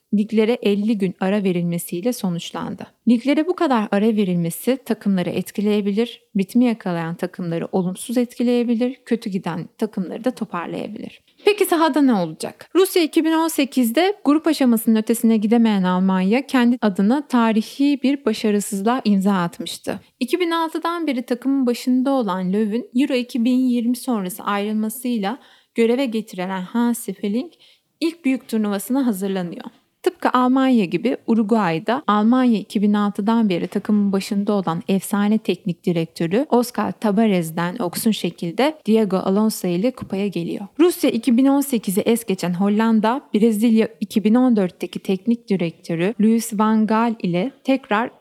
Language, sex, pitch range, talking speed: Turkish, female, 195-250 Hz, 120 wpm